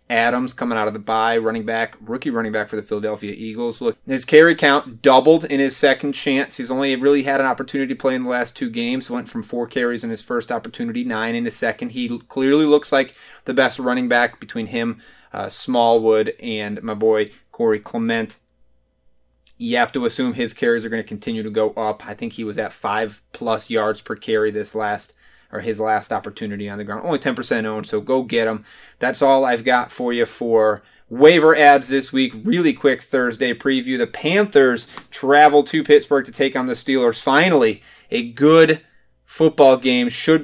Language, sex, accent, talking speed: English, male, American, 200 wpm